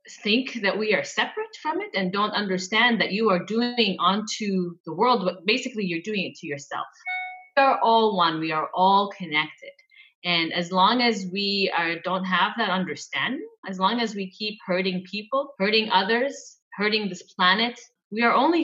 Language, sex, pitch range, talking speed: English, female, 185-245 Hz, 185 wpm